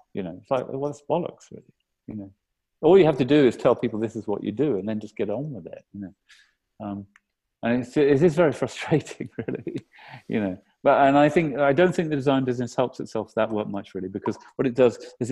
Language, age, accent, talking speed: English, 40-59, British, 245 wpm